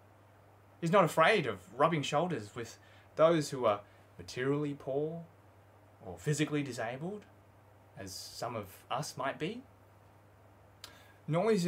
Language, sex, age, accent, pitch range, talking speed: English, male, 20-39, Australian, 100-155 Hz, 115 wpm